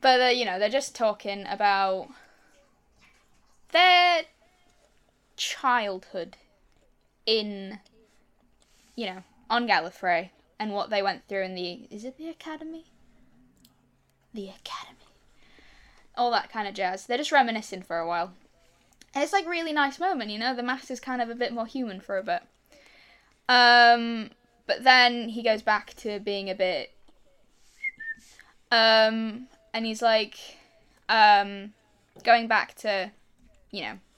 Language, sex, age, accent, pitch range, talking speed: English, female, 10-29, British, 195-245 Hz, 135 wpm